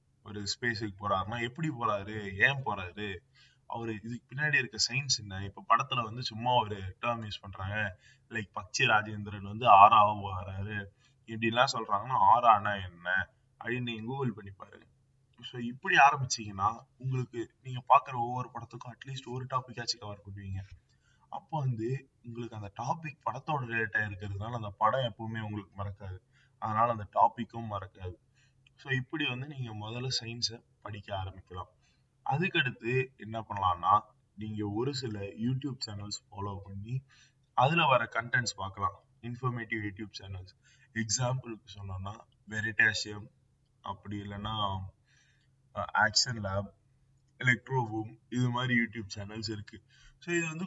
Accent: native